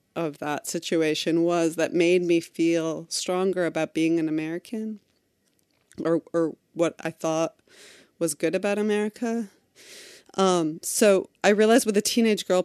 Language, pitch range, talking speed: English, 155-180 Hz, 140 wpm